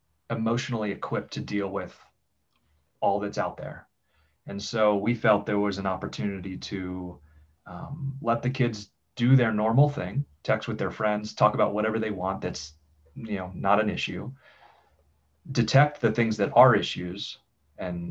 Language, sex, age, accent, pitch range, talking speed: English, male, 30-49, American, 95-120 Hz, 160 wpm